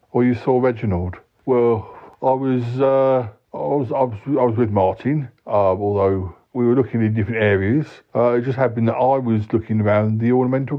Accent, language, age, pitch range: British, English, 60-79, 105-140 Hz